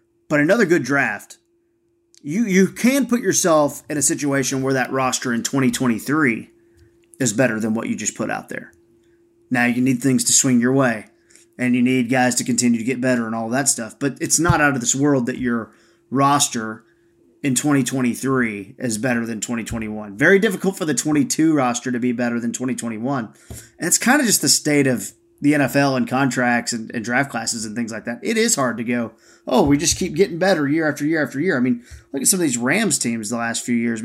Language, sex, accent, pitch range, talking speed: English, male, American, 120-155 Hz, 220 wpm